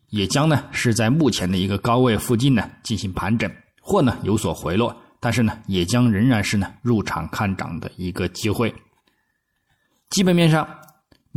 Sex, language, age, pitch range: male, Chinese, 20-39, 105-140 Hz